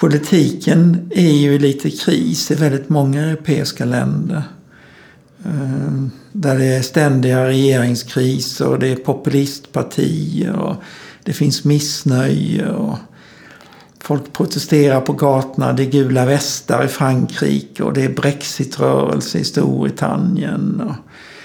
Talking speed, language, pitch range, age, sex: 120 wpm, Swedish, 130-150 Hz, 60-79, male